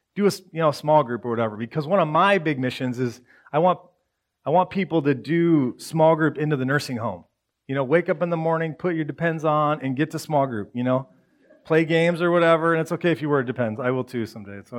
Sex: male